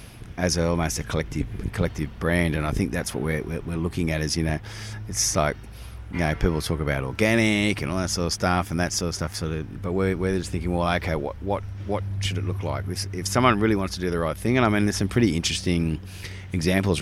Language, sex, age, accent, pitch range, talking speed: English, male, 30-49, Australian, 75-95 Hz, 245 wpm